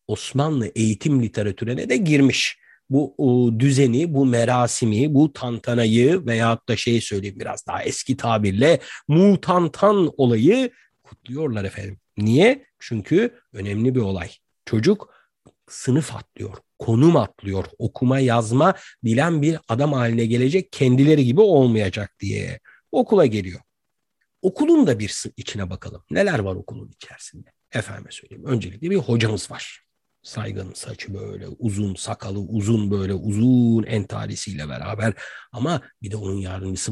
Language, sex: Turkish, male